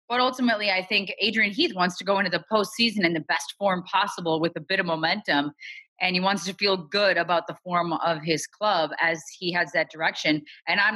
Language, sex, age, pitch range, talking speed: English, female, 20-39, 165-210 Hz, 225 wpm